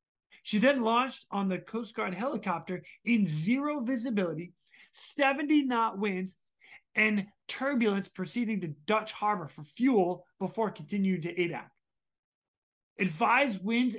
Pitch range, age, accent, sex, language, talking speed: 190-240 Hz, 30-49, American, male, English, 120 wpm